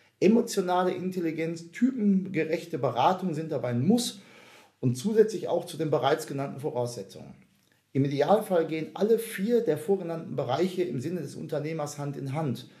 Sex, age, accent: male, 40-59, German